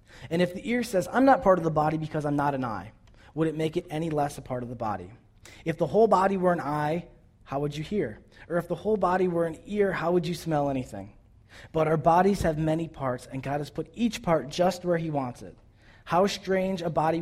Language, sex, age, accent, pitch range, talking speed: English, male, 30-49, American, 130-180 Hz, 250 wpm